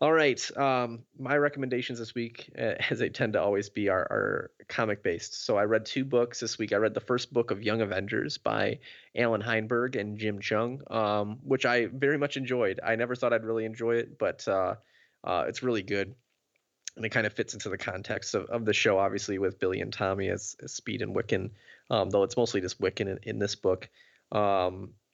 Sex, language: male, English